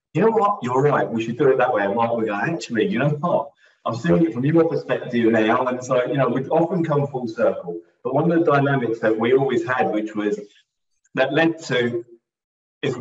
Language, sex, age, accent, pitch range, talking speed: English, male, 30-49, British, 105-135 Hz, 230 wpm